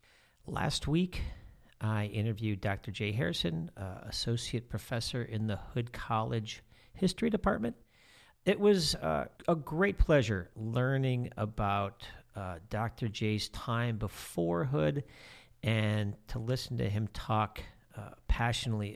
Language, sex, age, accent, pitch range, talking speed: English, male, 50-69, American, 100-125 Hz, 120 wpm